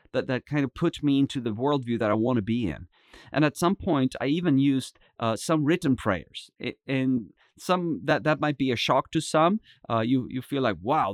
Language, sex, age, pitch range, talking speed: English, male, 30-49, 115-145 Hz, 225 wpm